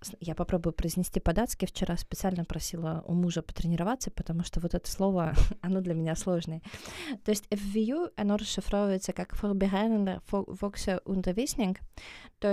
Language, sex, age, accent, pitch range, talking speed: Russian, female, 20-39, native, 185-215 Hz, 145 wpm